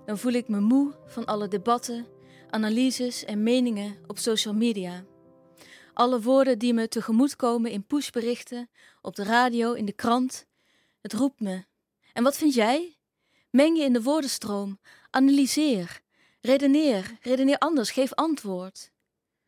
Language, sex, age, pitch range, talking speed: Dutch, female, 20-39, 205-255 Hz, 140 wpm